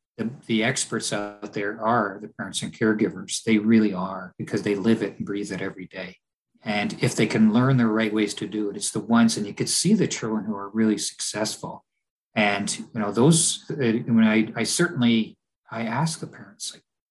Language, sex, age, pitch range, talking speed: English, male, 50-69, 110-155 Hz, 215 wpm